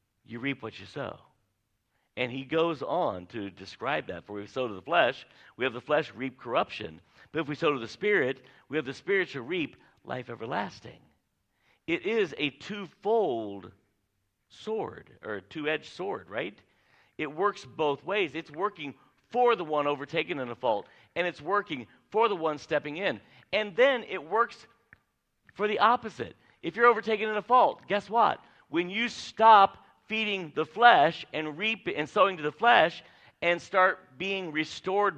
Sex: male